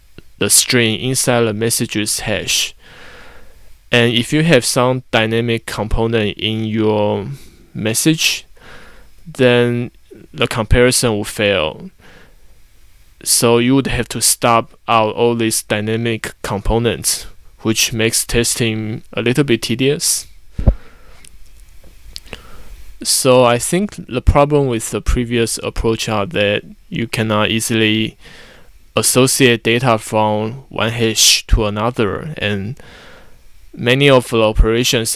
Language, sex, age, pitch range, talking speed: English, male, 20-39, 105-125 Hz, 110 wpm